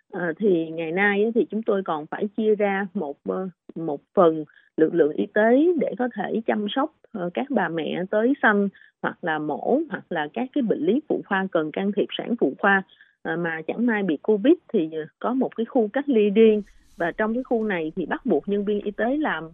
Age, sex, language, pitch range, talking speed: 30-49, female, Vietnamese, 165-235 Hz, 220 wpm